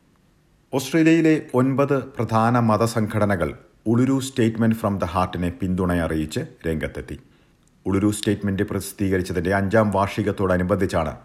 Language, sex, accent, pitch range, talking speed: Malayalam, male, native, 90-120 Hz, 90 wpm